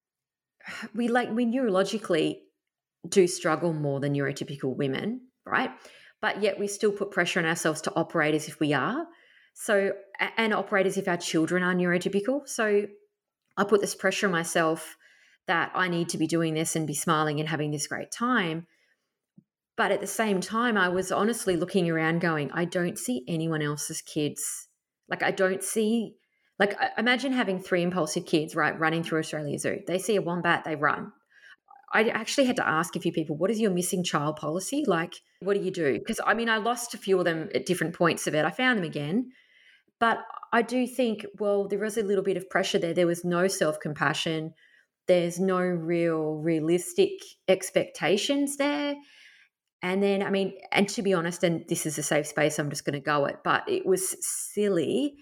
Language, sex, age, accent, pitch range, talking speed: English, female, 20-39, Australian, 160-215 Hz, 195 wpm